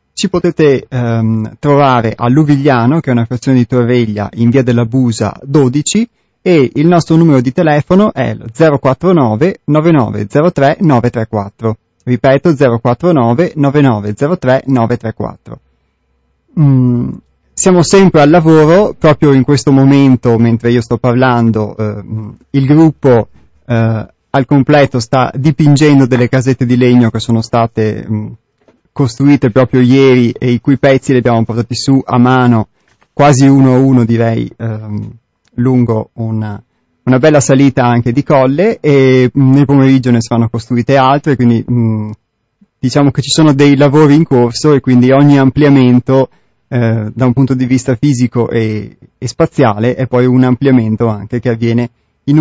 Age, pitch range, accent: 30-49, 115-140 Hz, native